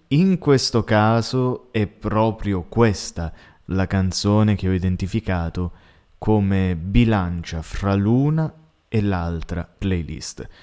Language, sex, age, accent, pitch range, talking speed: Italian, male, 20-39, native, 85-110 Hz, 100 wpm